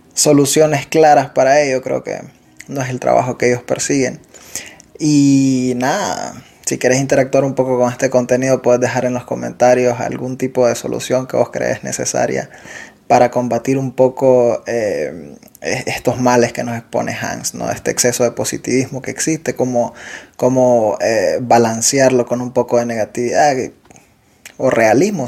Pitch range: 125-130 Hz